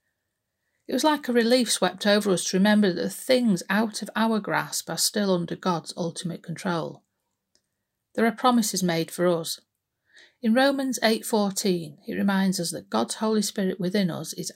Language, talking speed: English, 175 wpm